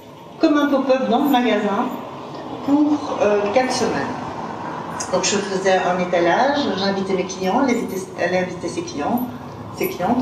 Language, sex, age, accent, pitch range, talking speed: French, female, 40-59, French, 180-240 Hz, 140 wpm